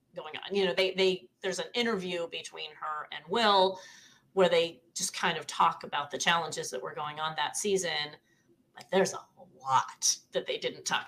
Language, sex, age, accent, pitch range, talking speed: English, female, 30-49, American, 165-230 Hz, 195 wpm